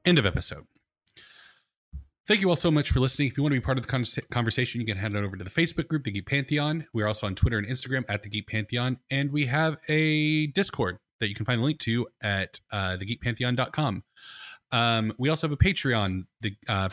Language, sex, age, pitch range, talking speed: English, male, 20-39, 105-140 Hz, 240 wpm